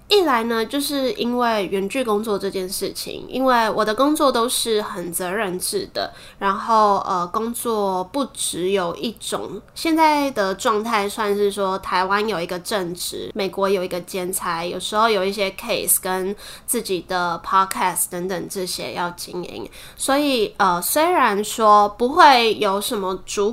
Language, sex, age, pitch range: Chinese, female, 20-39, 190-245 Hz